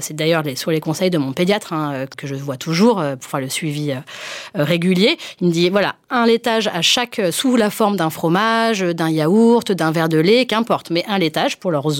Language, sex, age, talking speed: French, female, 30-49, 235 wpm